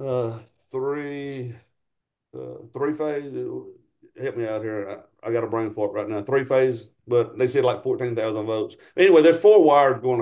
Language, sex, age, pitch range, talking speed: English, male, 50-69, 120-170 Hz, 190 wpm